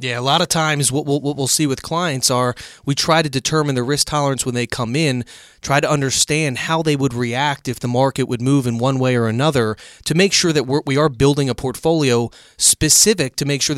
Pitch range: 120-145 Hz